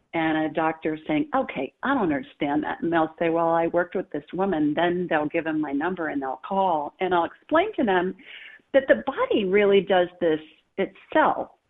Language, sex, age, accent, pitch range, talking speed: English, female, 50-69, American, 165-205 Hz, 200 wpm